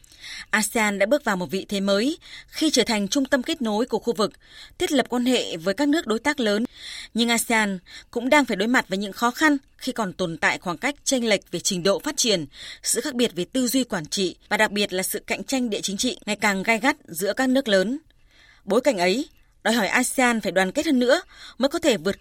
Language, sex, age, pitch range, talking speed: Vietnamese, female, 20-39, 195-260 Hz, 250 wpm